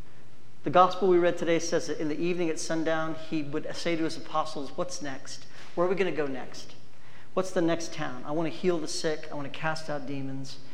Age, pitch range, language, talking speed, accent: 40-59, 145-180 Hz, English, 240 wpm, American